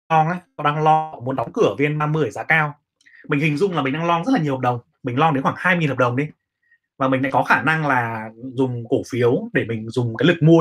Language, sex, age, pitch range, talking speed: Vietnamese, male, 20-39, 125-155 Hz, 265 wpm